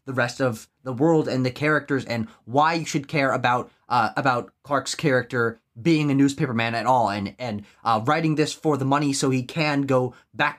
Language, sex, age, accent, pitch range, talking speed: English, male, 20-39, American, 130-170 Hz, 210 wpm